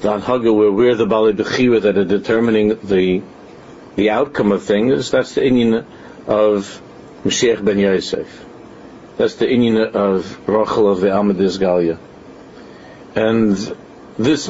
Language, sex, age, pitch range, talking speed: English, male, 50-69, 100-120 Hz, 135 wpm